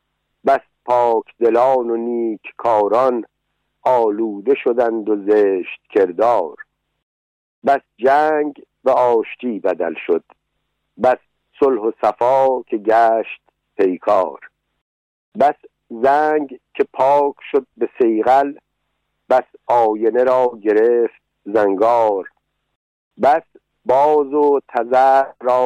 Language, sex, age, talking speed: Persian, male, 60-79, 95 wpm